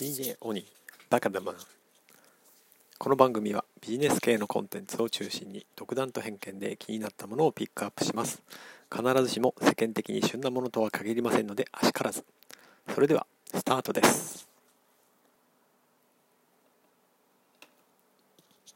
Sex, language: male, Japanese